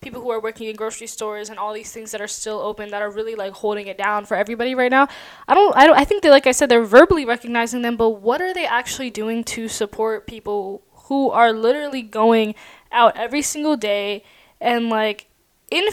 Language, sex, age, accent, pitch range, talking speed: English, female, 10-29, American, 220-265 Hz, 225 wpm